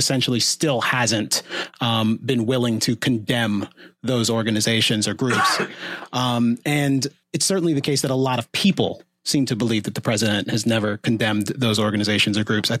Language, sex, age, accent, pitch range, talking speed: English, male, 30-49, American, 110-135 Hz, 175 wpm